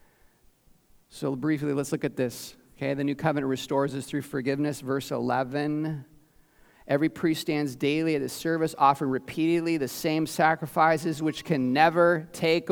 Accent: American